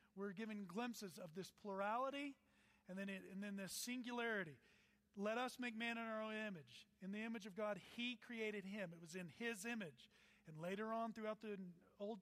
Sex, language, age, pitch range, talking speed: male, English, 40-59, 180-225 Hz, 195 wpm